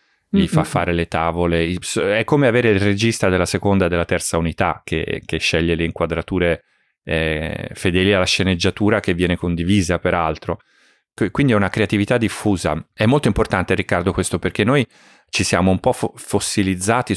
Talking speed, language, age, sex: 160 wpm, Italian, 30-49, male